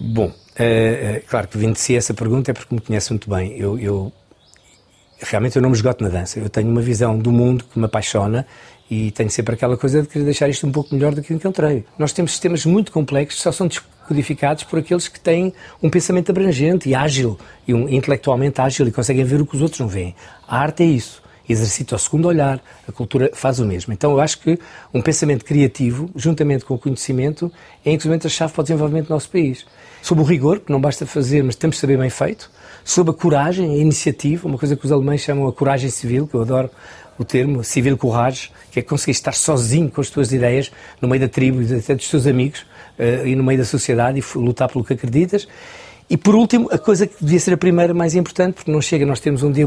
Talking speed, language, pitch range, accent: 240 wpm, Portuguese, 125-155 Hz, Portuguese